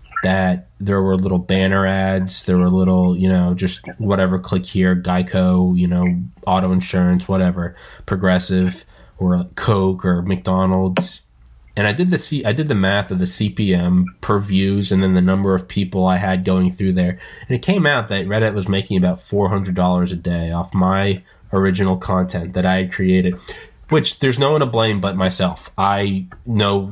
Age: 20-39